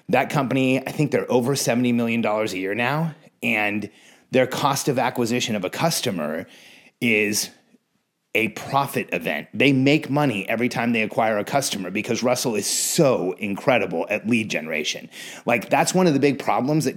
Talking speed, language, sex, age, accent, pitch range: 170 wpm, English, male, 30-49, American, 120-160 Hz